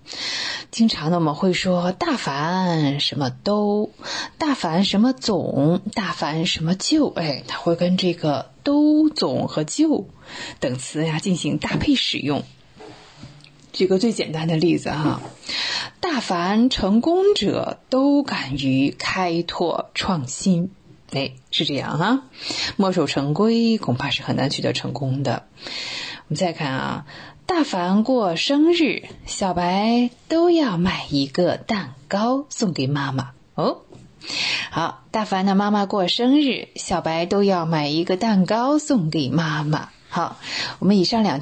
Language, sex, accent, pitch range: Chinese, female, native, 155-235 Hz